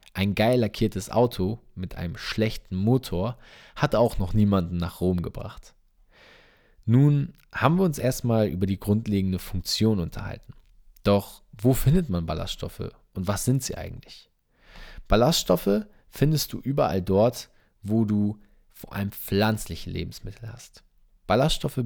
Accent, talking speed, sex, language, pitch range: German, 130 wpm, male, German, 95-125 Hz